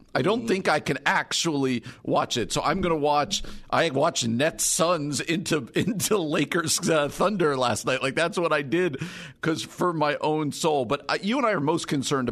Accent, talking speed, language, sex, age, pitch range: American, 205 wpm, English, male, 50-69, 135-175 Hz